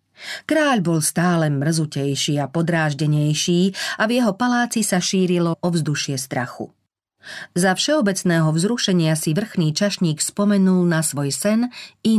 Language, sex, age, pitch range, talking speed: Slovak, female, 40-59, 150-200 Hz, 130 wpm